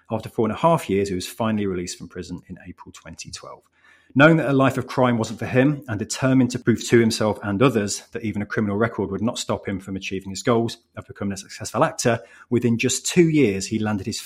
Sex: male